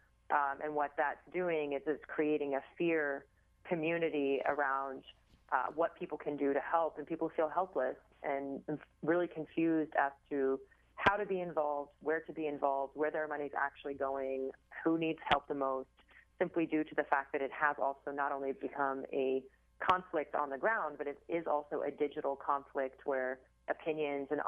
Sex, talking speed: female, 180 wpm